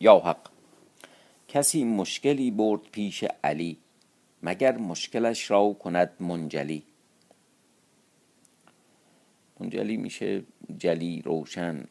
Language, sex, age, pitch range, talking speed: Persian, male, 50-69, 90-120 Hz, 80 wpm